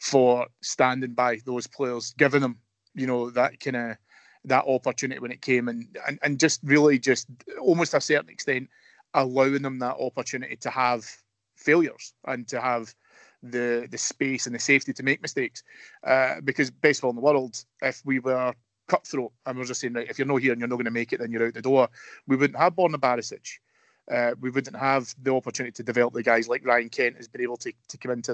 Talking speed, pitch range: 220 wpm, 120-140 Hz